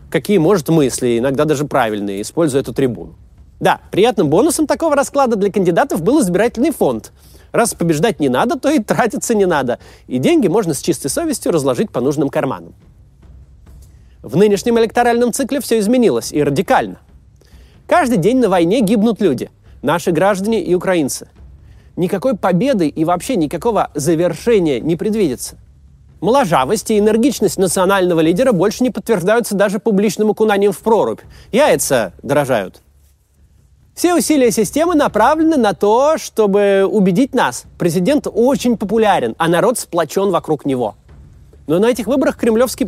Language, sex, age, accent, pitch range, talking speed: Russian, male, 30-49, native, 165-240 Hz, 140 wpm